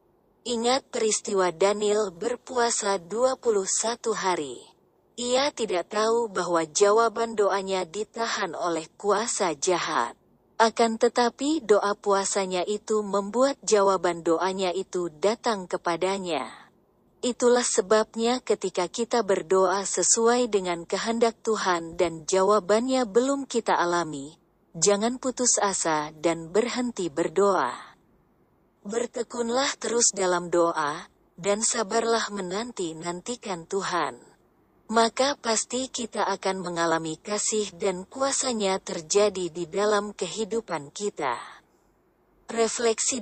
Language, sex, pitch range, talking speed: Indonesian, female, 180-230 Hz, 95 wpm